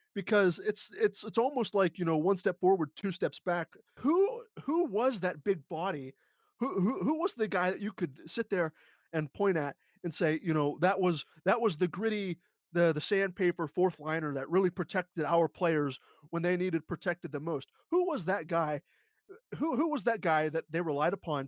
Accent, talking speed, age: American, 205 wpm, 30-49